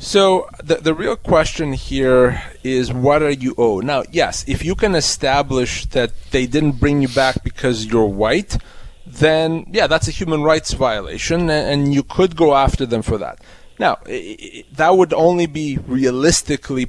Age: 30-49